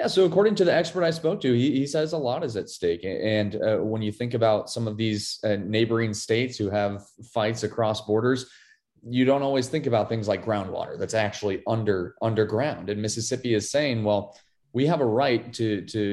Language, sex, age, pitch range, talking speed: English, male, 30-49, 105-125 Hz, 210 wpm